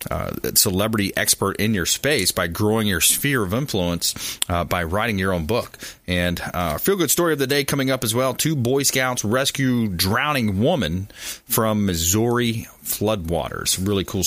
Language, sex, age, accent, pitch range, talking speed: English, male, 30-49, American, 95-125 Hz, 175 wpm